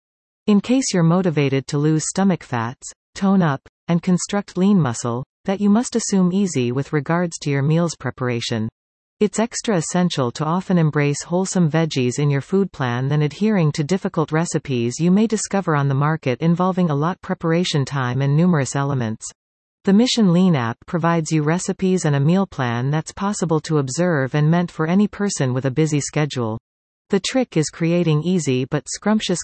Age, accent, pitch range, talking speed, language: 40-59, American, 135-185 Hz, 175 wpm, English